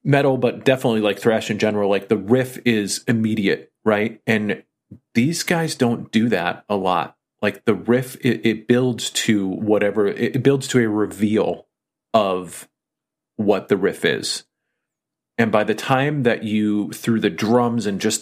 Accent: American